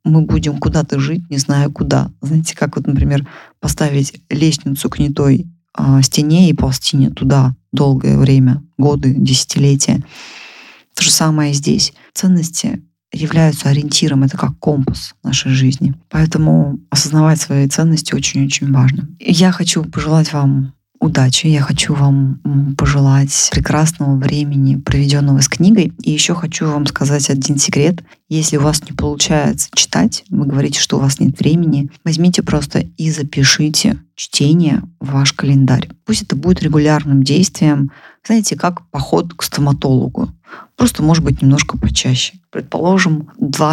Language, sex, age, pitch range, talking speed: Russian, female, 20-39, 140-165 Hz, 145 wpm